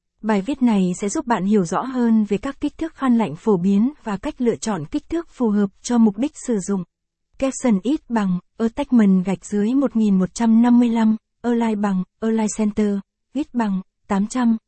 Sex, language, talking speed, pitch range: female, Vietnamese, 180 wpm, 205-245 Hz